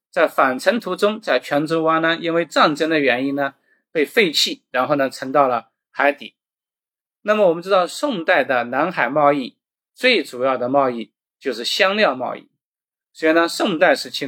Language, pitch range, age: Chinese, 130-185 Hz, 20-39